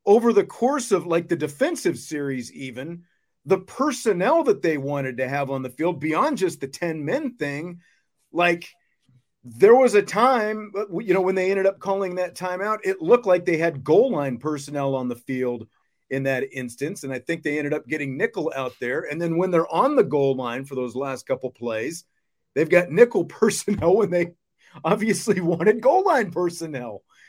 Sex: male